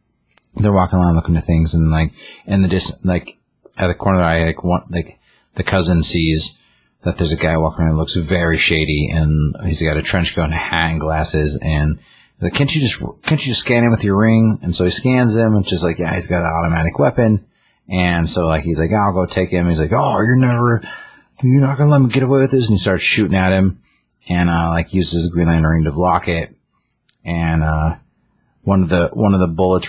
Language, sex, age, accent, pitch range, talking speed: English, male, 30-49, American, 80-95 Hz, 245 wpm